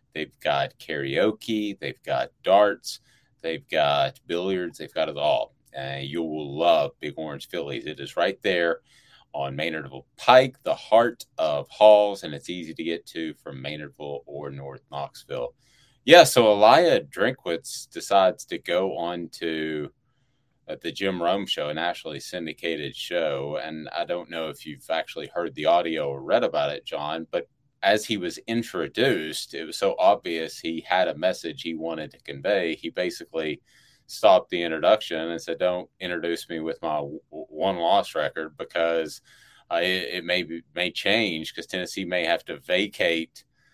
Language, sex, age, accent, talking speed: English, male, 30-49, American, 165 wpm